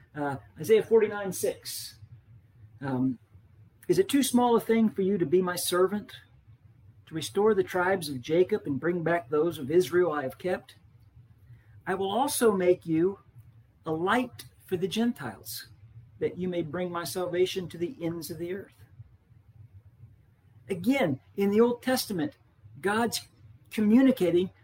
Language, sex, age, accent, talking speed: English, male, 50-69, American, 145 wpm